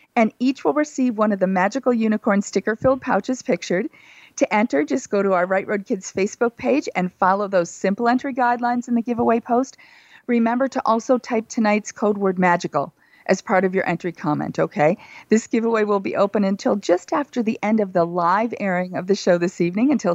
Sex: female